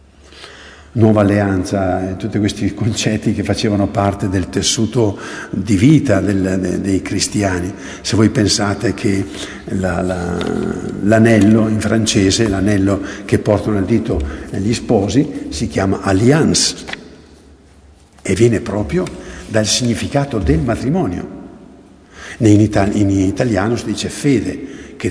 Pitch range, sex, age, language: 100-145 Hz, male, 50-69, Italian